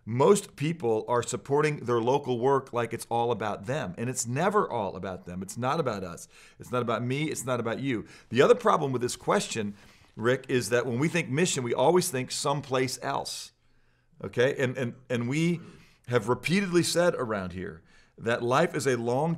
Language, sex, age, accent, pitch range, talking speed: English, male, 40-59, American, 115-150 Hz, 190 wpm